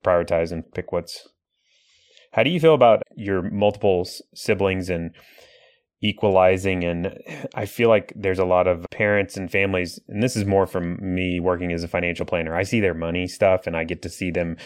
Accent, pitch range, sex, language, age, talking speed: American, 90-110 Hz, male, English, 30-49, 190 wpm